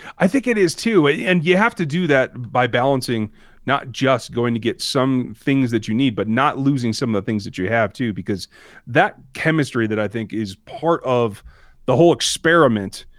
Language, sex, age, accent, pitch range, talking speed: English, male, 30-49, American, 115-165 Hz, 210 wpm